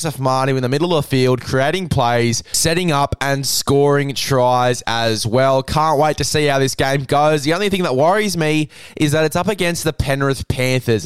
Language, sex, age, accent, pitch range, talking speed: English, male, 10-29, Australian, 130-160 Hz, 200 wpm